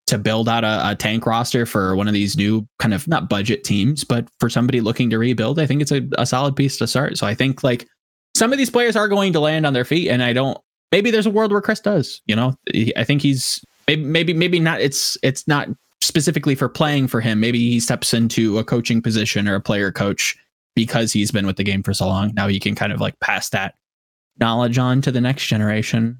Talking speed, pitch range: 245 wpm, 110-135 Hz